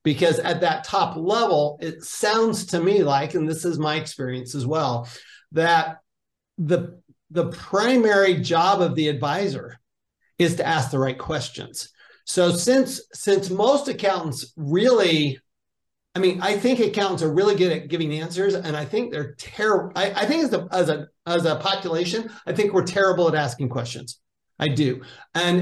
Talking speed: 170 wpm